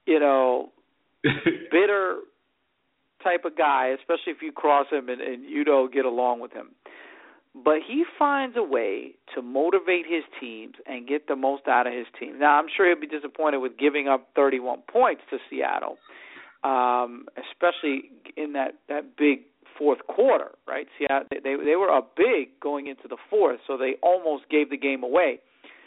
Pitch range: 140-185 Hz